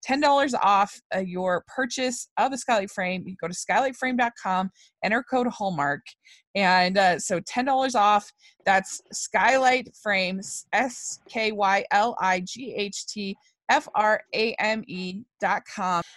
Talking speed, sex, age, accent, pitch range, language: 90 wpm, female, 20-39, American, 195-255 Hz, English